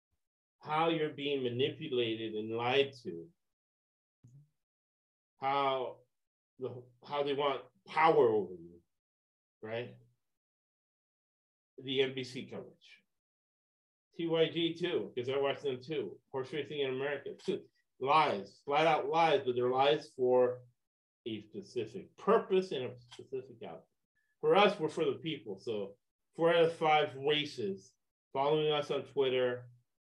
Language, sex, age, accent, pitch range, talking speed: English, male, 40-59, American, 120-165 Hz, 125 wpm